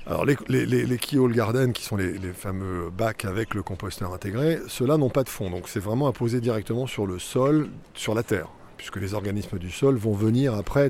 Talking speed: 230 wpm